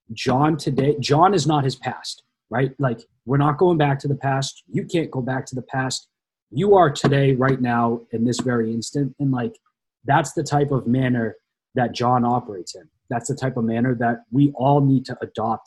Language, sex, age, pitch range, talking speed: English, male, 30-49, 115-140 Hz, 205 wpm